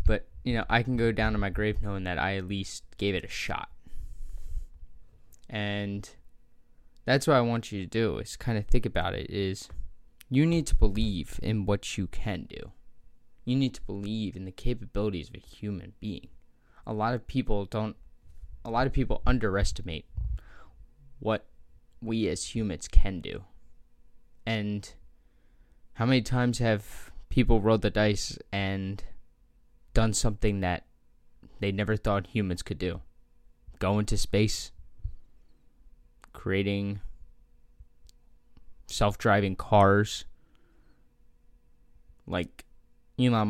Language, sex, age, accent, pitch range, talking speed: English, male, 10-29, American, 85-110 Hz, 130 wpm